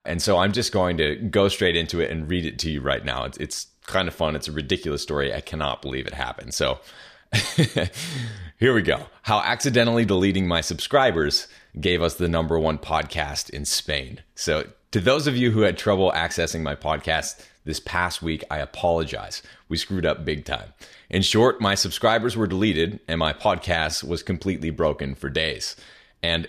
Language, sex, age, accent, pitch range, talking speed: English, male, 30-49, American, 80-95 Hz, 190 wpm